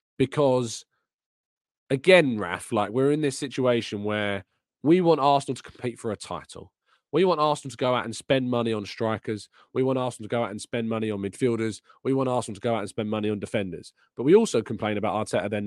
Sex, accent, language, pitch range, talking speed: male, British, English, 110-135 Hz, 220 wpm